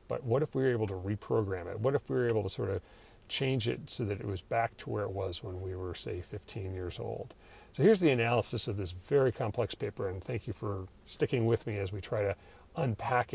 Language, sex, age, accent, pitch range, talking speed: English, male, 40-59, American, 100-120 Hz, 245 wpm